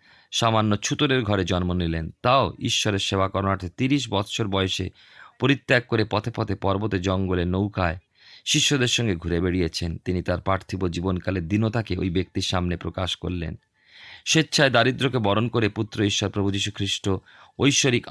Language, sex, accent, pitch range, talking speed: Bengali, male, native, 90-115 Hz, 135 wpm